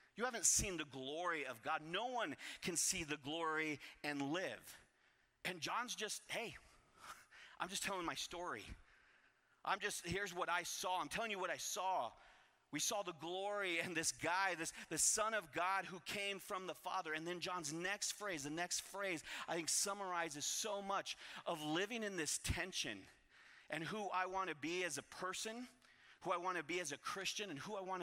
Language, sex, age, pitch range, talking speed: English, male, 30-49, 145-195 Hz, 195 wpm